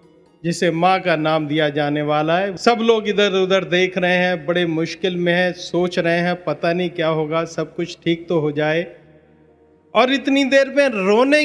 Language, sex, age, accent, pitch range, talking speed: Hindi, male, 50-69, native, 165-215 Hz, 195 wpm